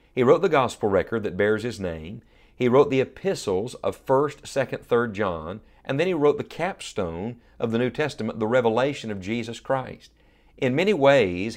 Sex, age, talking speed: male, 50-69, 185 wpm